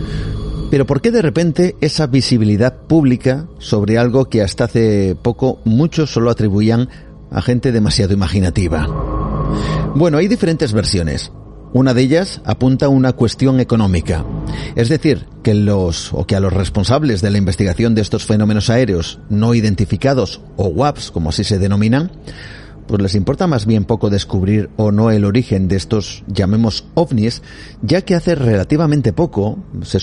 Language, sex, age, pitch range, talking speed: Spanish, male, 40-59, 100-135 Hz, 155 wpm